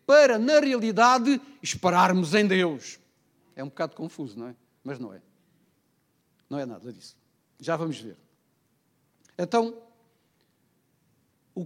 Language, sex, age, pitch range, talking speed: Portuguese, male, 50-69, 165-240 Hz, 125 wpm